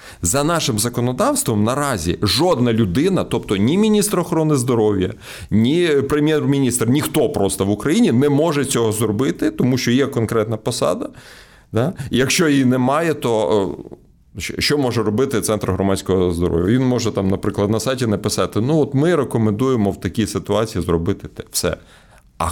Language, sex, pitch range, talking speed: Ukrainian, male, 95-130 Hz, 145 wpm